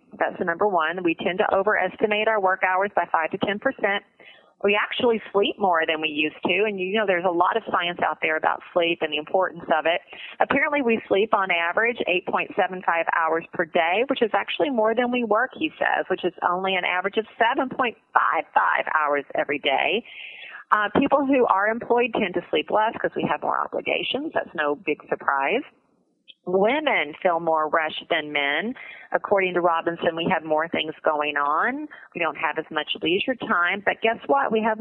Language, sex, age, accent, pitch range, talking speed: English, female, 30-49, American, 170-230 Hz, 195 wpm